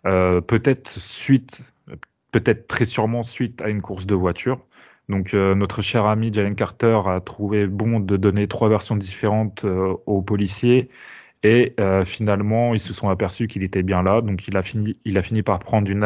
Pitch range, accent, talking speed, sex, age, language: 95-115 Hz, French, 190 wpm, male, 20-39, French